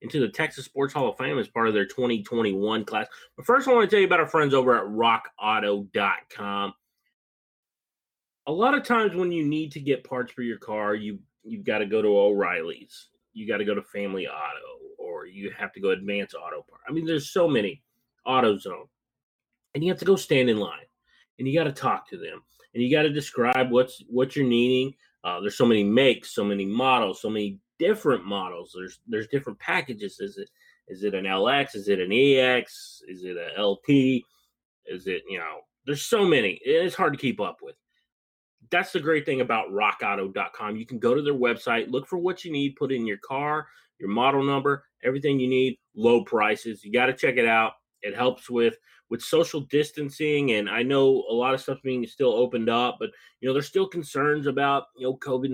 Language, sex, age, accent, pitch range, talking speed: English, male, 30-49, American, 115-155 Hz, 215 wpm